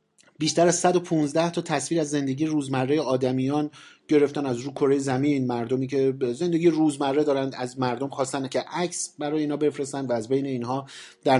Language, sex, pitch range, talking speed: Persian, male, 125-150 Hz, 170 wpm